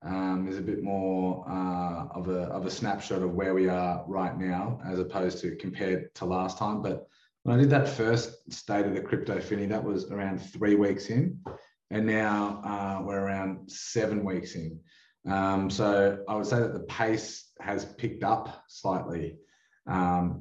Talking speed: 180 wpm